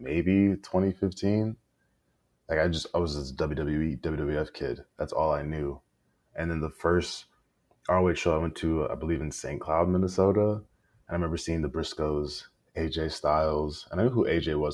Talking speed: 180 wpm